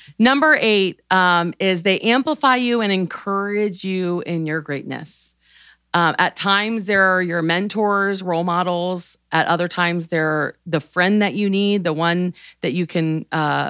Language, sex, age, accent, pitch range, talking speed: English, female, 30-49, American, 165-195 Hz, 160 wpm